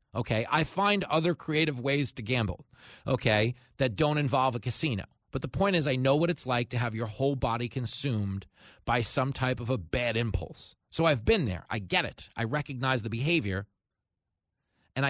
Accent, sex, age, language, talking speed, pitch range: American, male, 40-59, English, 190 wpm, 115-155 Hz